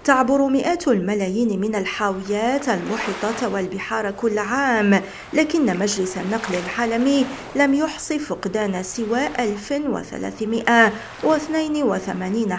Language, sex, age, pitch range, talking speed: Arabic, female, 40-59, 200-250 Hz, 85 wpm